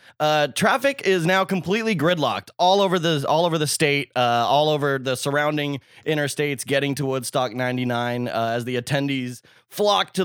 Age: 20-39